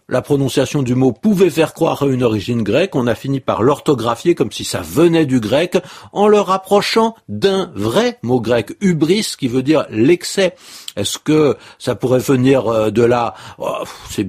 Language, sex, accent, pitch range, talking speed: French, male, French, 105-155 Hz, 175 wpm